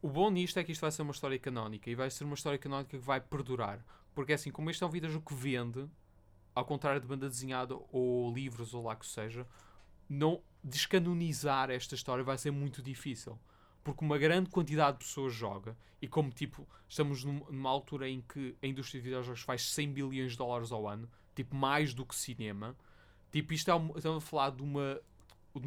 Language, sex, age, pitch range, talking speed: Portuguese, male, 20-39, 125-150 Hz, 205 wpm